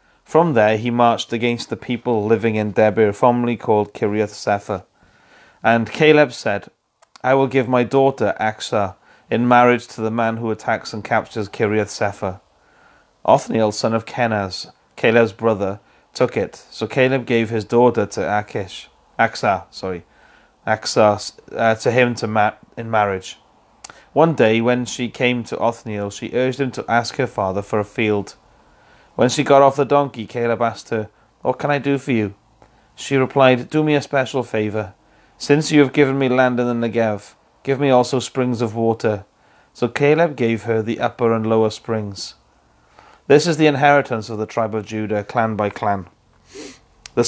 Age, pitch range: 30-49, 110-125 Hz